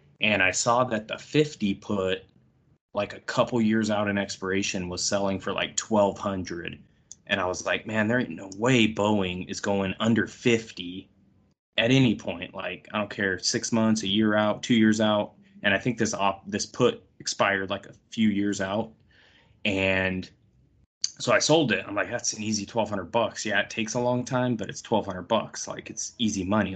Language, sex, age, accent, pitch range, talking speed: English, male, 20-39, American, 95-110 Hz, 195 wpm